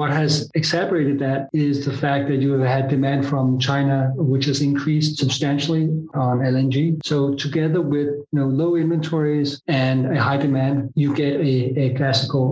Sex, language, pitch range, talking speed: male, Danish, 135-155 Hz, 175 wpm